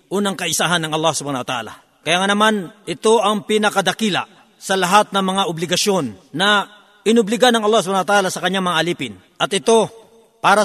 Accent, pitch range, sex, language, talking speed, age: native, 175-215 Hz, male, Filipino, 175 wpm, 50-69